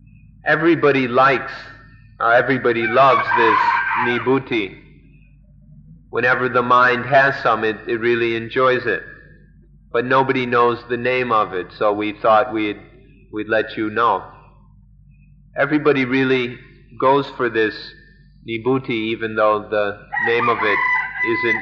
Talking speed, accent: 125 wpm, American